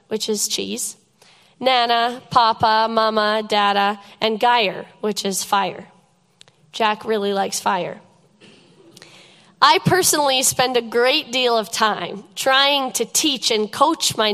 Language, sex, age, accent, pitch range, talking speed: English, female, 20-39, American, 205-260 Hz, 125 wpm